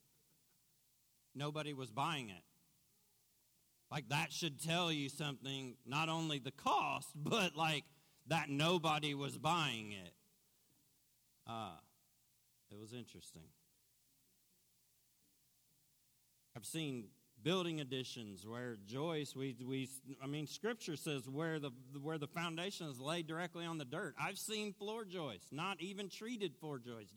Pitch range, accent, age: 125-160 Hz, American, 40-59